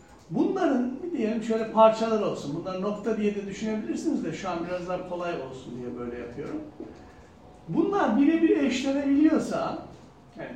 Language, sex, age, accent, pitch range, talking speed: Turkish, male, 60-79, native, 185-295 Hz, 140 wpm